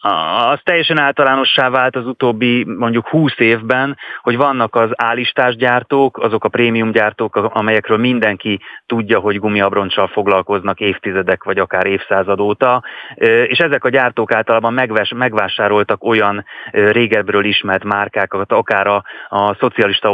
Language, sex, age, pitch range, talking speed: Hungarian, male, 30-49, 100-115 Hz, 130 wpm